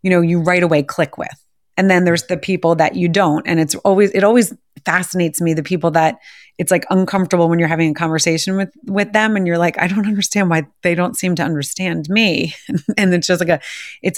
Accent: American